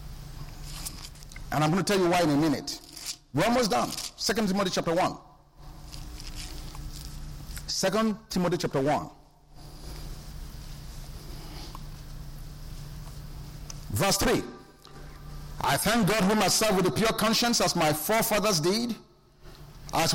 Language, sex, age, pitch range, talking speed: English, male, 50-69, 170-250 Hz, 110 wpm